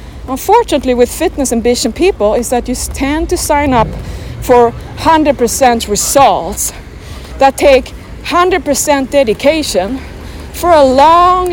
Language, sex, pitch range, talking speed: English, female, 260-335 Hz, 115 wpm